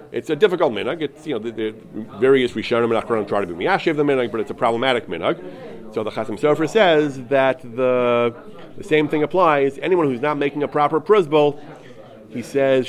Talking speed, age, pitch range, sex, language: 205 wpm, 30-49, 120-150 Hz, male, English